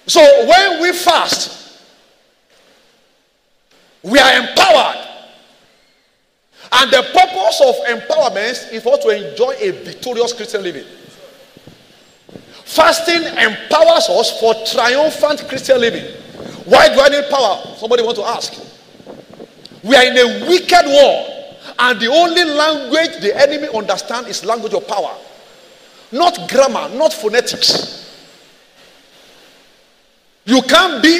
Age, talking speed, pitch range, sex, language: 40-59, 115 wpm, 240-345 Hz, male, English